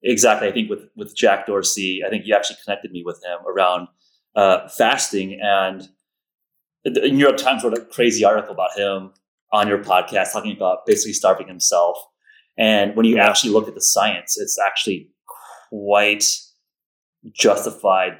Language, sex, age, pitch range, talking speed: English, male, 30-49, 100-155 Hz, 165 wpm